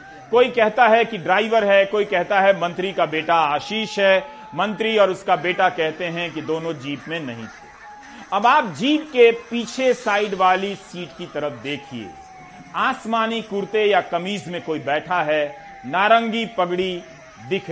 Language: Hindi